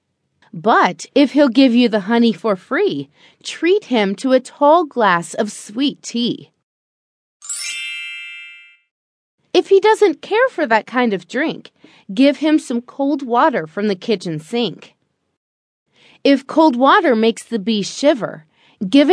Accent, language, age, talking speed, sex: American, English, 30-49, 140 wpm, female